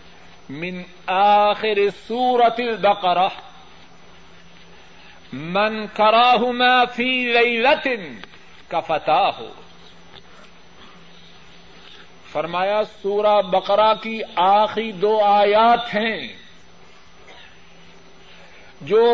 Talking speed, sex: 65 wpm, male